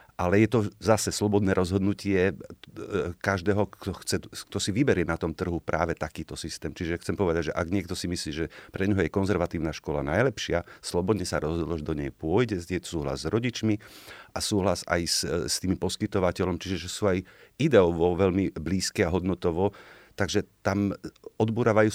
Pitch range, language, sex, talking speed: 85-105 Hz, Slovak, male, 170 wpm